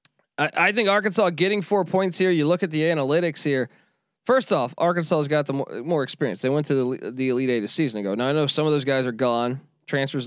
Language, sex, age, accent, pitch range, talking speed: English, male, 20-39, American, 140-180 Hz, 240 wpm